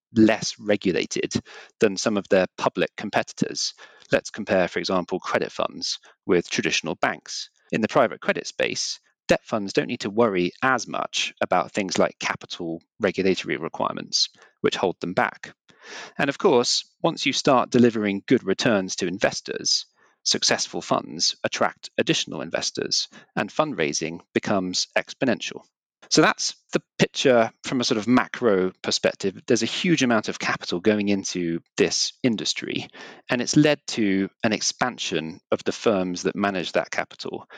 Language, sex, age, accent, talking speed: English, male, 40-59, British, 150 wpm